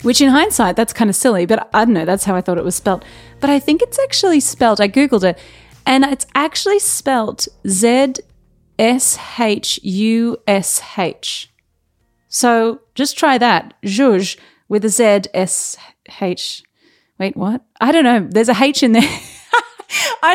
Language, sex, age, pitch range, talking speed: English, female, 30-49, 185-255 Hz, 150 wpm